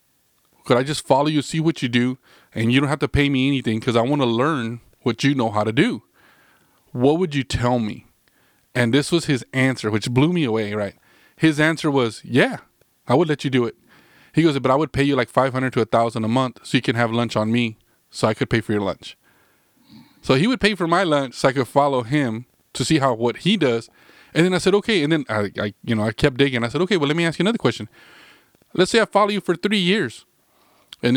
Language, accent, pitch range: English, American, 120-150 Hz